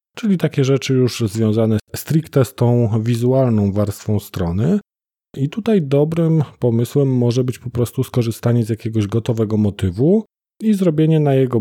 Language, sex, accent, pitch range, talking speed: Polish, male, native, 110-140 Hz, 145 wpm